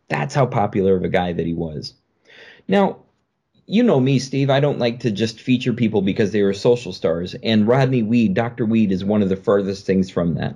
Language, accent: English, American